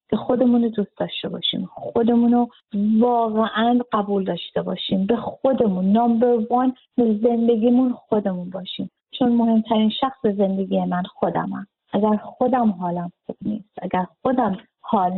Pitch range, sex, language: 180-240 Hz, female, Arabic